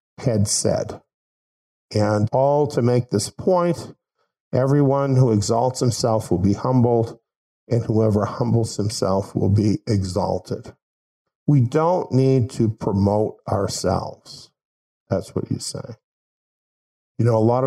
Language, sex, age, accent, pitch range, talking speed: English, male, 50-69, American, 105-130 Hz, 120 wpm